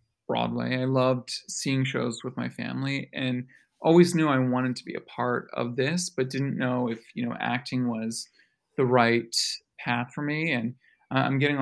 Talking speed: 180 wpm